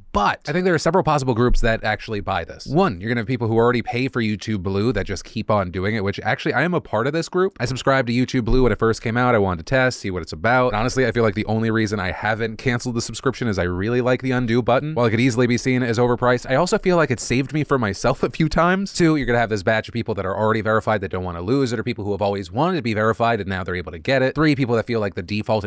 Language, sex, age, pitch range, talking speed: English, male, 20-39, 105-135 Hz, 320 wpm